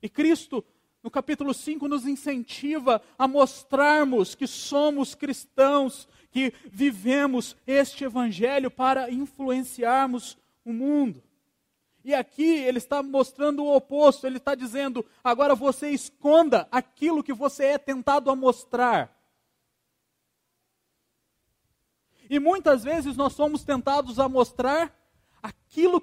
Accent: Brazilian